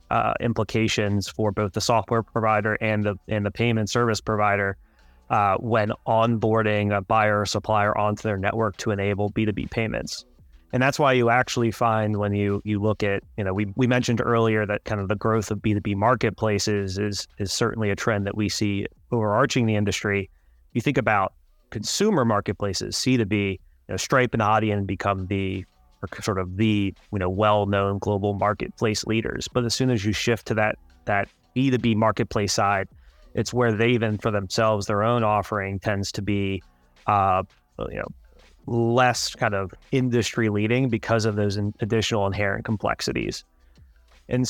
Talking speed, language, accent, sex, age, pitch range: 175 wpm, English, American, male, 30-49, 100-115 Hz